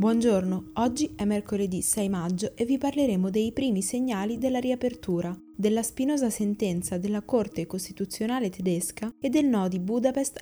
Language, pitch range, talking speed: Italian, 185-235 Hz, 150 wpm